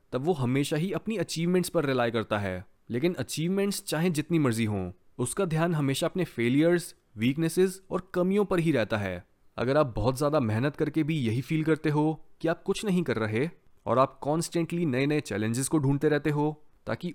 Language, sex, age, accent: Hindi, male, 20-39, native